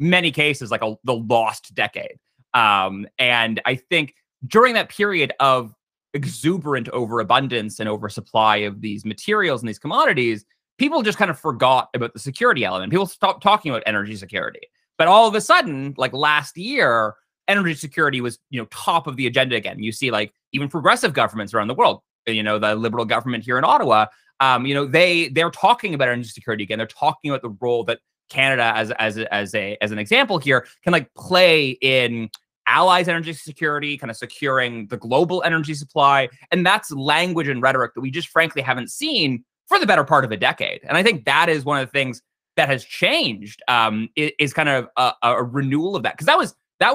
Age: 20-39